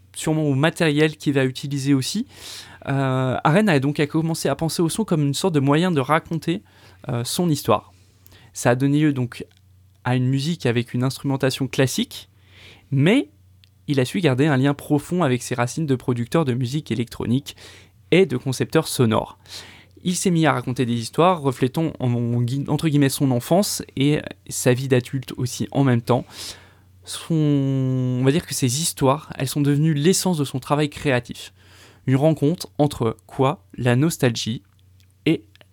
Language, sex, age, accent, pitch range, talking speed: French, male, 20-39, French, 115-150 Hz, 175 wpm